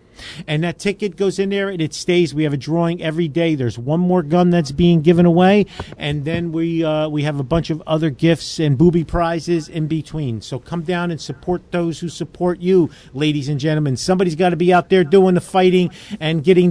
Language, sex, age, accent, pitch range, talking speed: English, male, 50-69, American, 140-180 Hz, 225 wpm